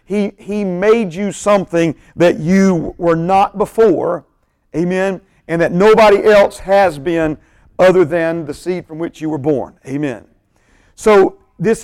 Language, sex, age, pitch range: English, male, 50-69, 155-200 Hz